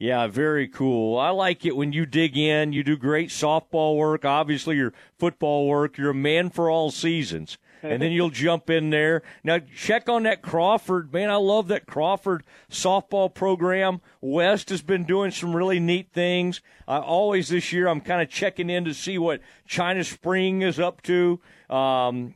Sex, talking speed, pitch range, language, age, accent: male, 185 wpm, 150-185 Hz, English, 40-59, American